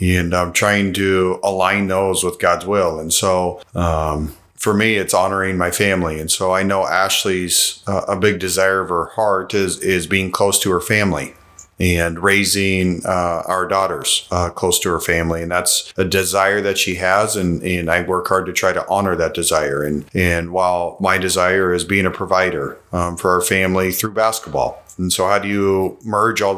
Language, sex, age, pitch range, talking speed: English, male, 40-59, 90-100 Hz, 195 wpm